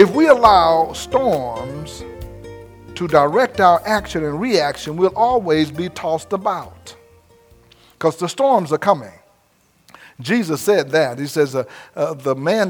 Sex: male